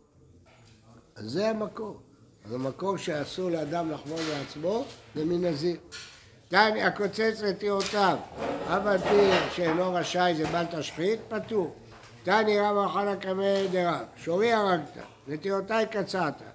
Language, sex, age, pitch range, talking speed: Hebrew, male, 60-79, 155-205 Hz, 105 wpm